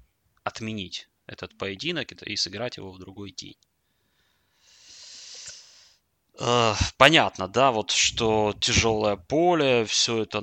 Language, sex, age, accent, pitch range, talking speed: Russian, male, 20-39, native, 95-115 Hz, 100 wpm